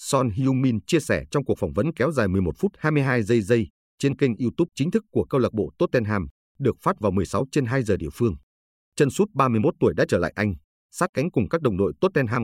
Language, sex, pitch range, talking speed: Vietnamese, male, 95-135 Hz, 235 wpm